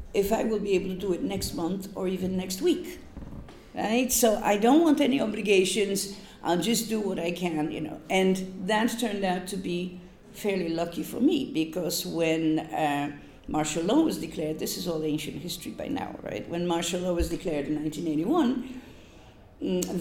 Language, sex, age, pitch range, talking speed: English, female, 50-69, 165-220 Hz, 185 wpm